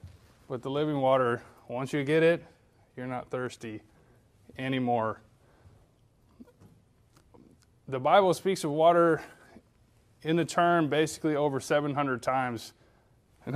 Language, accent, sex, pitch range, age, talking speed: English, American, male, 125-155 Hz, 20-39, 110 wpm